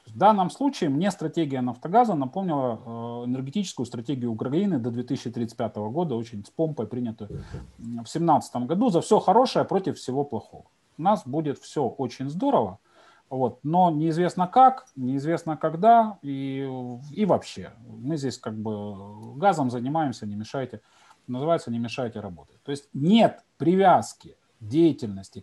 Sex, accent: male, native